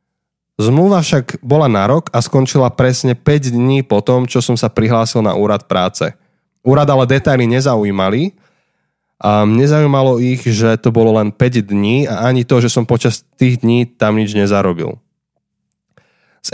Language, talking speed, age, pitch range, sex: Slovak, 155 wpm, 20-39, 110-135 Hz, male